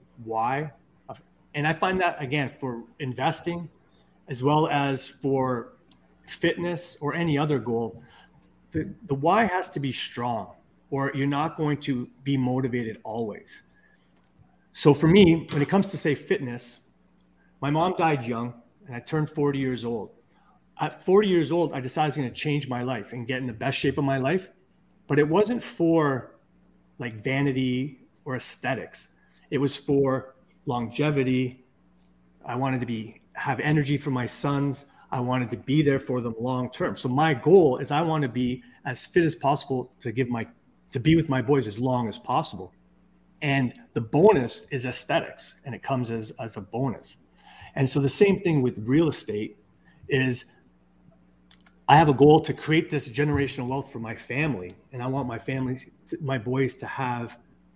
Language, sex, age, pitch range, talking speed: English, male, 30-49, 120-150 Hz, 175 wpm